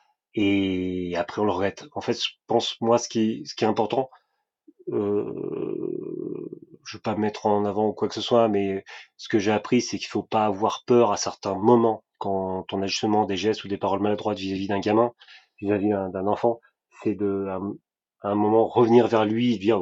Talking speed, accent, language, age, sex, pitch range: 215 wpm, French, French, 30-49, male, 100-120 Hz